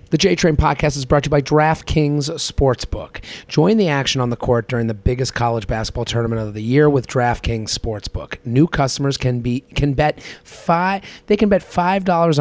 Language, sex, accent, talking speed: English, male, American, 195 wpm